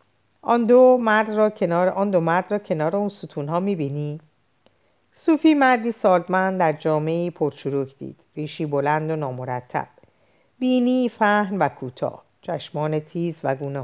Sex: female